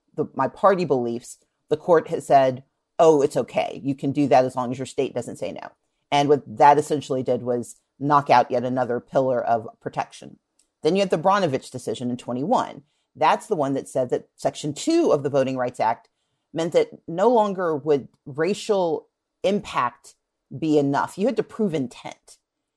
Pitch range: 125-155 Hz